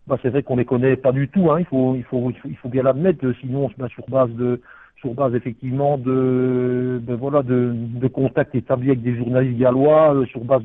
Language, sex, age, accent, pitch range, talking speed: French, male, 60-79, French, 125-145 Hz, 240 wpm